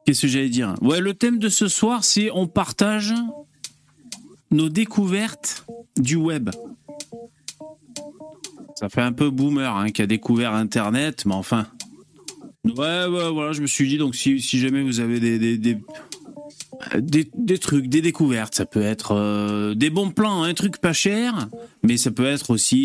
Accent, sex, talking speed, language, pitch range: French, male, 180 wpm, French, 115-195 Hz